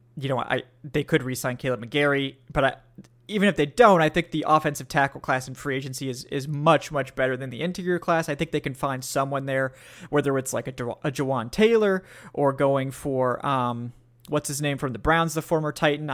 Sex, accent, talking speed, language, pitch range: male, American, 220 wpm, English, 130-160 Hz